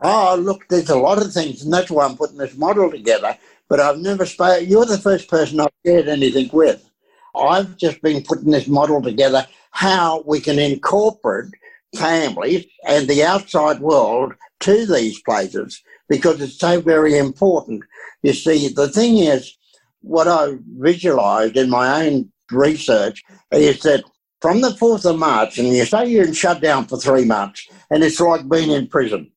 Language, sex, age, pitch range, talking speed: English, male, 60-79, 145-190 Hz, 170 wpm